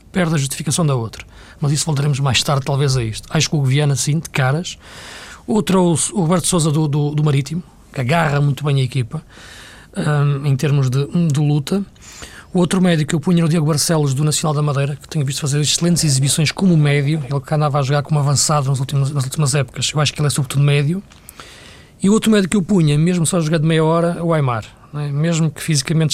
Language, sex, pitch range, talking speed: Portuguese, male, 140-165 Hz, 235 wpm